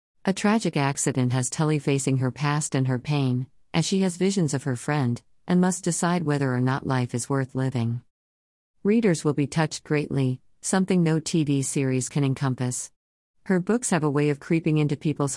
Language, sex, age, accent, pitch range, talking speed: English, female, 40-59, American, 130-175 Hz, 185 wpm